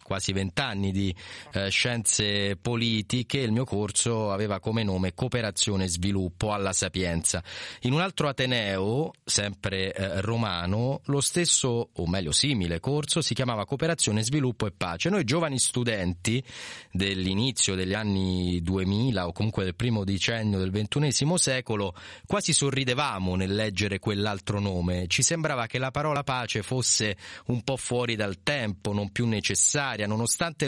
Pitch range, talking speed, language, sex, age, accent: 100-135 Hz, 145 wpm, Italian, male, 30-49, native